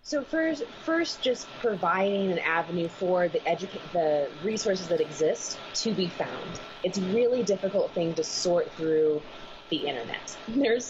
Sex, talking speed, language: female, 155 wpm, English